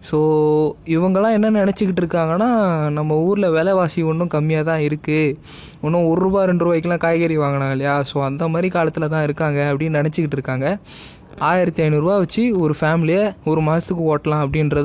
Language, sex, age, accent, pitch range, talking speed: Tamil, male, 20-39, native, 150-185 Hz, 140 wpm